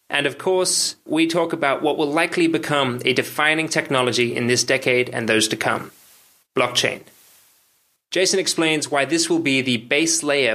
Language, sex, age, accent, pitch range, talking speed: English, male, 20-39, Australian, 125-155 Hz, 170 wpm